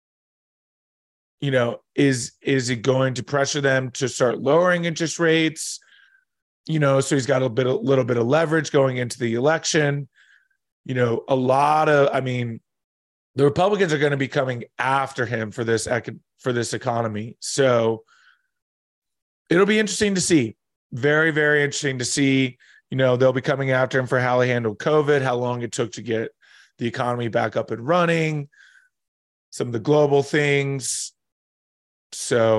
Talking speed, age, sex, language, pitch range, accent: 170 wpm, 30-49, male, English, 120-145 Hz, American